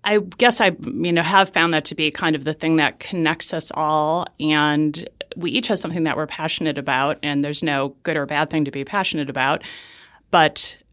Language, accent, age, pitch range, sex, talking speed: English, American, 30-49, 145-170 Hz, female, 215 wpm